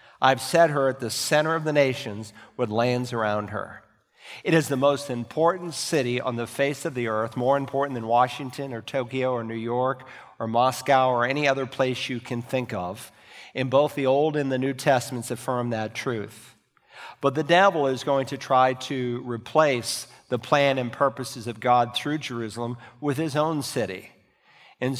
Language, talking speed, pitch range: English, 185 wpm, 120-140 Hz